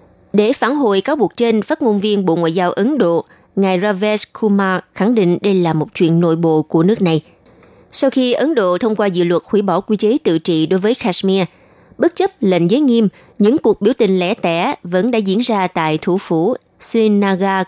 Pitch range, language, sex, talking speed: 175-235 Hz, Vietnamese, female, 215 wpm